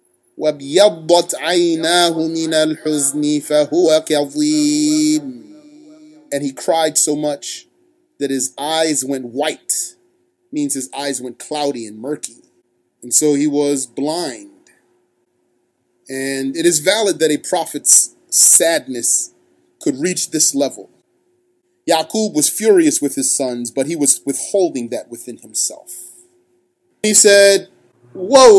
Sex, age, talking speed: male, 30-49, 105 wpm